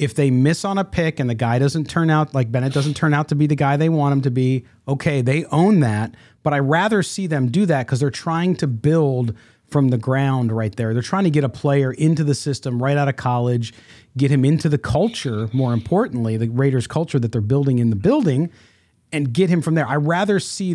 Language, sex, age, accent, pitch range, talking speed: English, male, 40-59, American, 125-155 Hz, 245 wpm